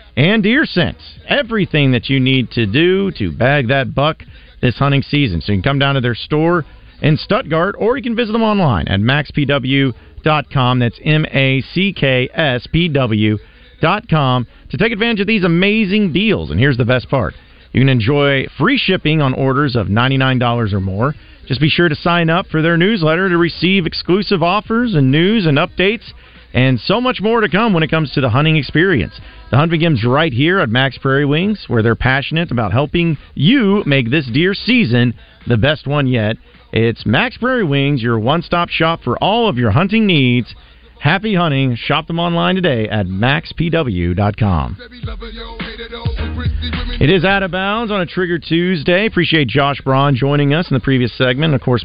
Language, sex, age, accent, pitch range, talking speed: English, male, 40-59, American, 125-175 Hz, 175 wpm